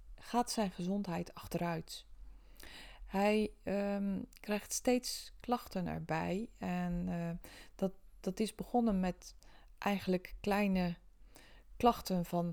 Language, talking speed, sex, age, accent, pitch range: Dutch, 100 wpm, female, 20-39, Dutch, 175-210 Hz